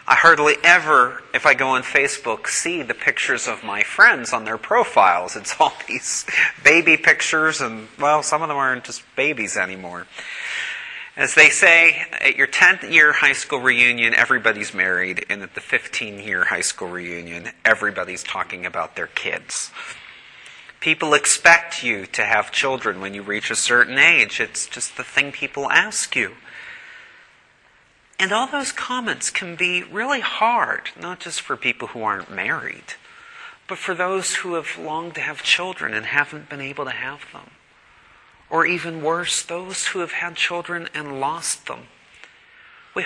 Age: 30-49